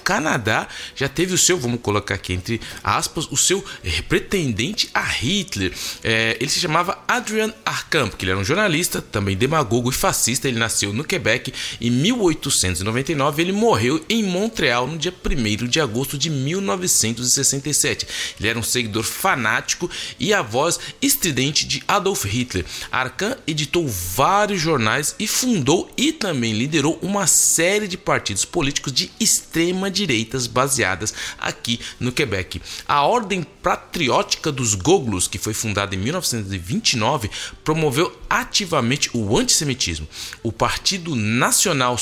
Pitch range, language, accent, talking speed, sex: 115-180 Hz, Portuguese, Brazilian, 135 wpm, male